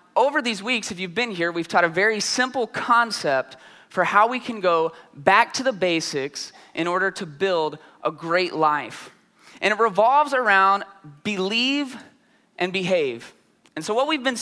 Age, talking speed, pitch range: 20-39, 170 wpm, 175-245 Hz